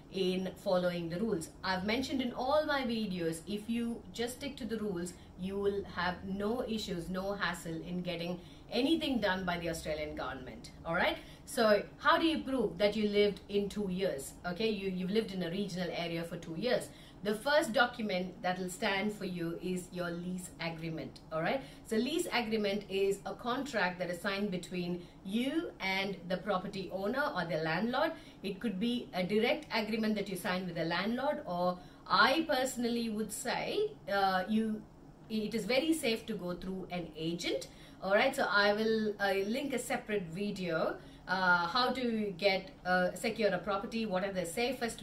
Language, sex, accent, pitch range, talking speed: Tamil, female, native, 180-225 Hz, 185 wpm